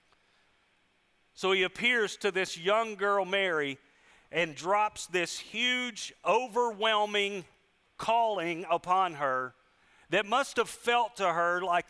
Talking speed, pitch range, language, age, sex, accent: 115 wpm, 135-185 Hz, English, 40-59, male, American